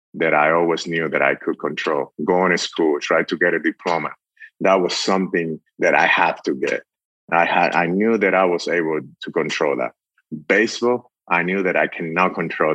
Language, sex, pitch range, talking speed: English, male, 80-100 Hz, 190 wpm